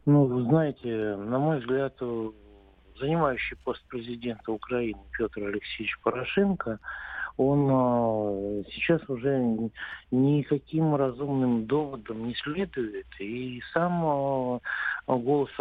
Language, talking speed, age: Russian, 90 wpm, 50-69